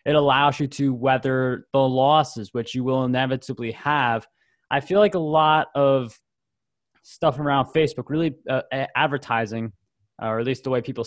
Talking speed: 170 wpm